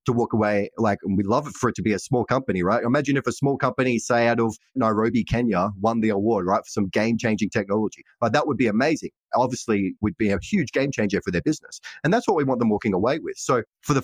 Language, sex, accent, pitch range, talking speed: English, male, Australian, 100-125 Hz, 255 wpm